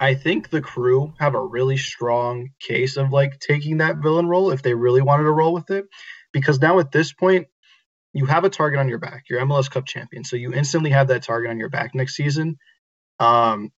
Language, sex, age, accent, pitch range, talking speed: English, male, 20-39, American, 125-150 Hz, 220 wpm